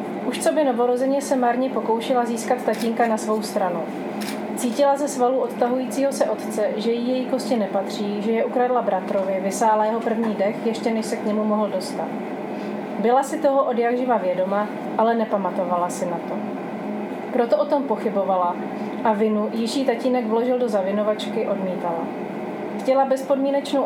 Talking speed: 160 wpm